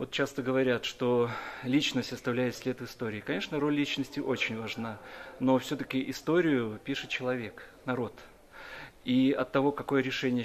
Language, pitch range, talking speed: Russian, 125-145 Hz, 140 wpm